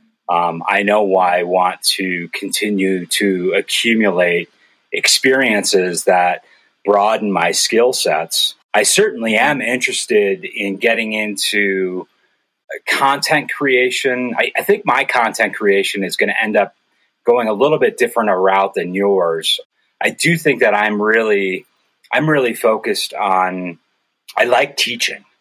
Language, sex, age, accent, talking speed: English, male, 30-49, American, 135 wpm